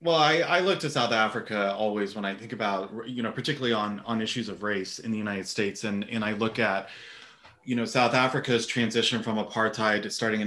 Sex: male